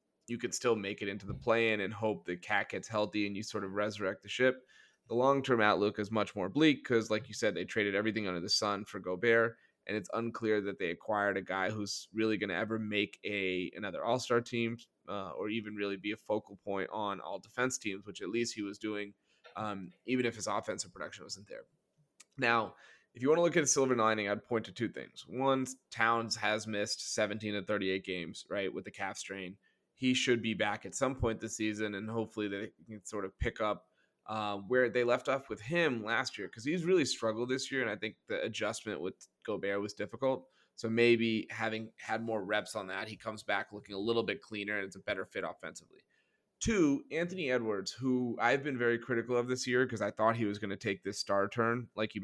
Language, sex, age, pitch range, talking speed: English, male, 20-39, 105-120 Hz, 230 wpm